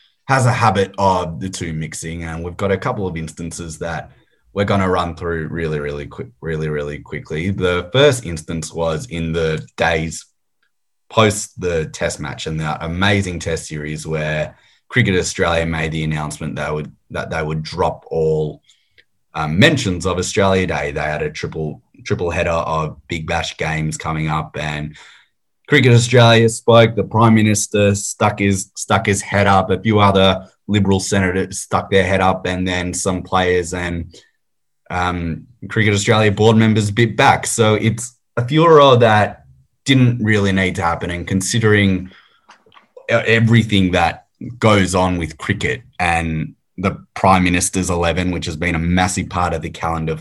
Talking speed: 165 wpm